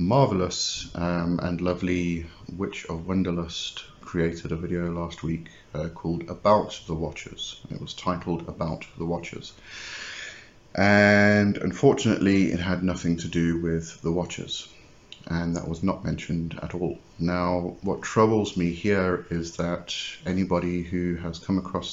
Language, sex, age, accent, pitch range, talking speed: English, male, 30-49, British, 85-95 Hz, 140 wpm